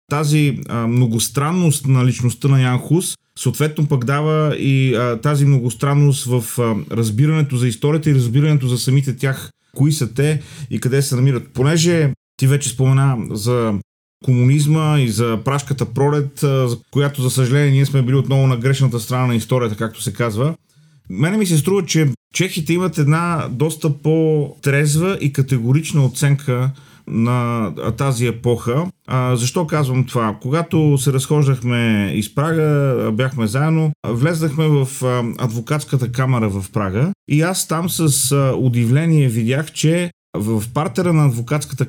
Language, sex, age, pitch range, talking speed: Bulgarian, male, 30-49, 125-150 Hz, 145 wpm